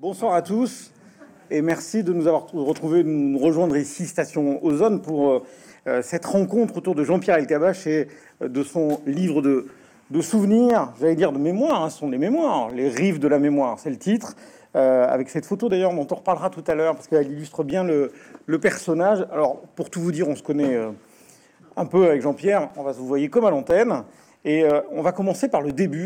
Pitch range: 145-185 Hz